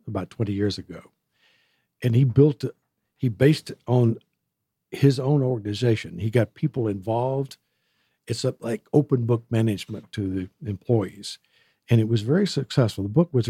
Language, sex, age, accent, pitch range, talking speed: English, male, 60-79, American, 105-135 Hz, 155 wpm